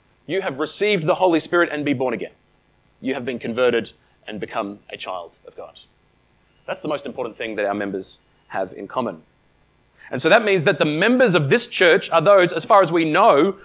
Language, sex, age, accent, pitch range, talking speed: English, male, 30-49, Australian, 150-235 Hz, 210 wpm